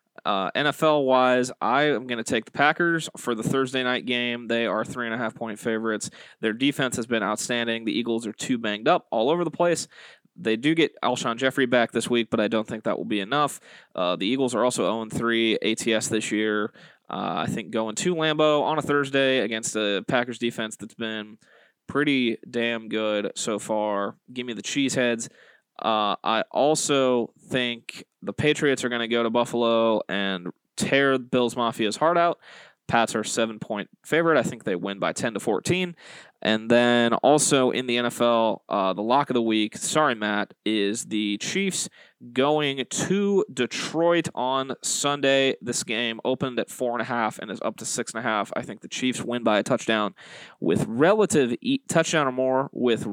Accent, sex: American, male